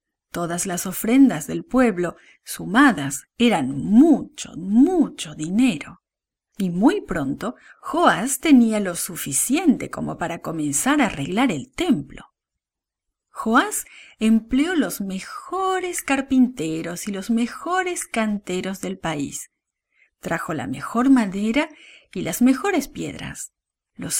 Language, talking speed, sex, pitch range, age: English, 110 wpm, female, 190-270 Hz, 40-59